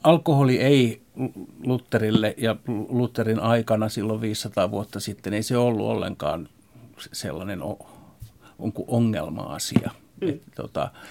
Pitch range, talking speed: 110-125 Hz, 95 wpm